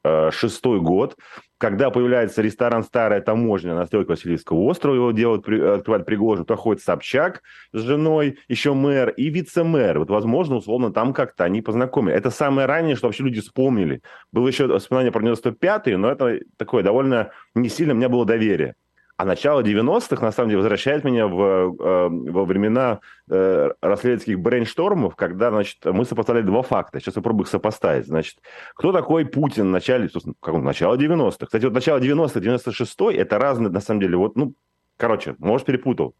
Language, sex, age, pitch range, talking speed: Russian, male, 30-49, 95-125 Hz, 170 wpm